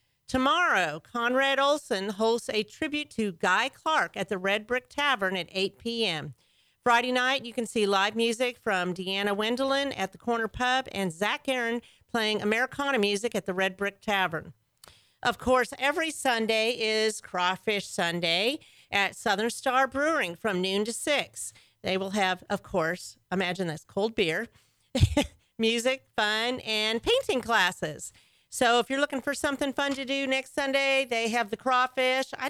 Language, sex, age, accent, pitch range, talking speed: English, female, 40-59, American, 195-265 Hz, 160 wpm